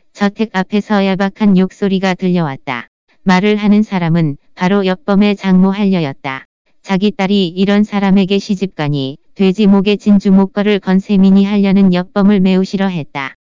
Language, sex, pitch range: Korean, female, 180-200 Hz